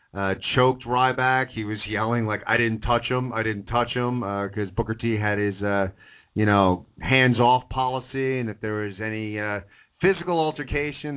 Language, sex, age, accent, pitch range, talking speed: English, male, 40-59, American, 110-130 Hz, 190 wpm